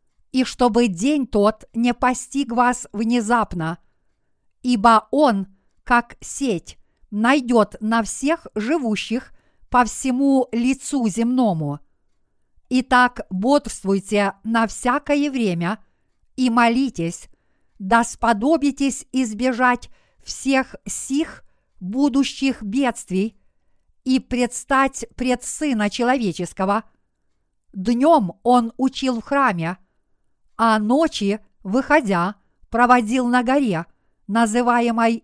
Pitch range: 200-260 Hz